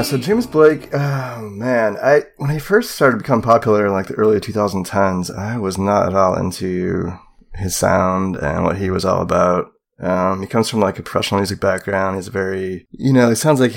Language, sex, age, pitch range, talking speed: English, male, 20-39, 95-110 Hz, 210 wpm